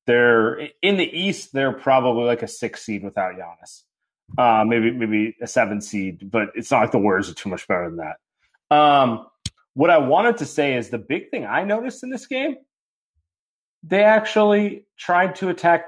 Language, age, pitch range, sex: English, 30-49, 115-165 Hz, male